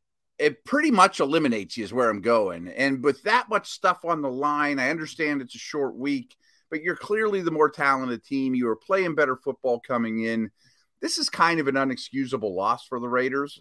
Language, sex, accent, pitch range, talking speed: English, male, American, 125-185 Hz, 205 wpm